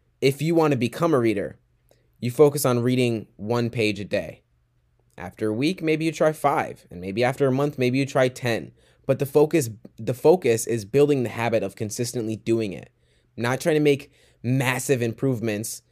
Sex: male